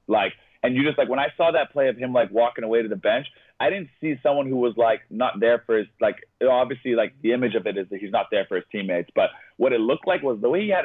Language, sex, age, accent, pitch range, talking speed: English, male, 30-49, American, 110-130 Hz, 300 wpm